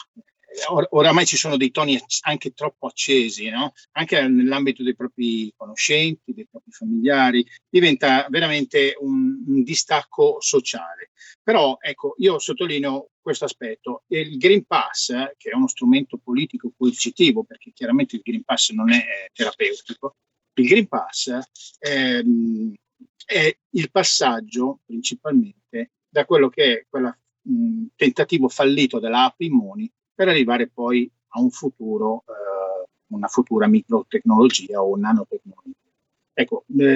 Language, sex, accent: Italian, male, native